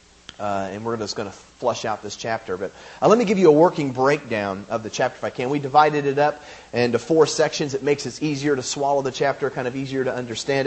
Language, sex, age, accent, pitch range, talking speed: English, male, 30-49, American, 135-195 Hz, 255 wpm